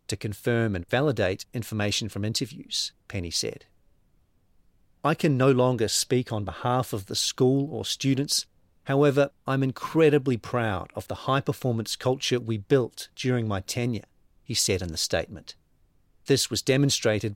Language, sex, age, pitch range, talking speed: English, male, 40-59, 105-130 Hz, 145 wpm